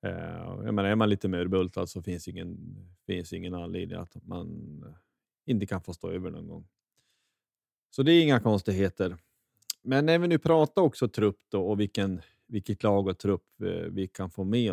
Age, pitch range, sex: 30-49, 95-120 Hz, male